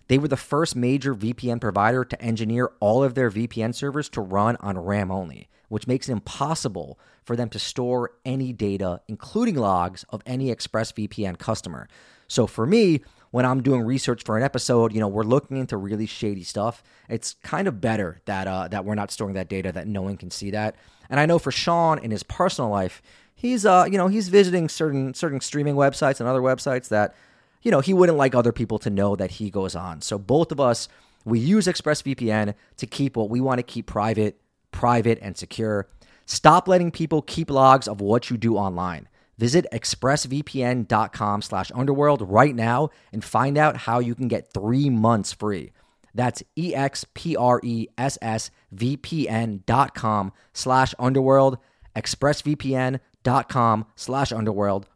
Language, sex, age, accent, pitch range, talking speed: English, male, 30-49, American, 105-135 Hz, 165 wpm